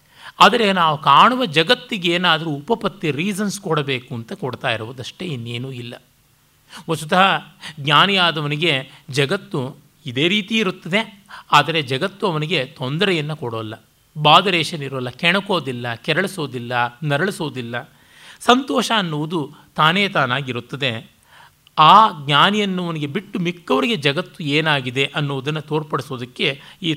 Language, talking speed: Kannada, 95 wpm